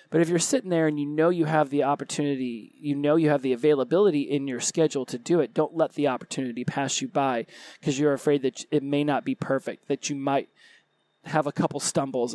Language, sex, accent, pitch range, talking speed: English, male, American, 135-155 Hz, 230 wpm